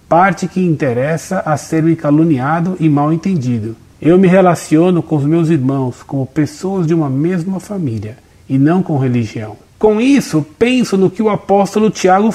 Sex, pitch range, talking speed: male, 145-190 Hz, 170 wpm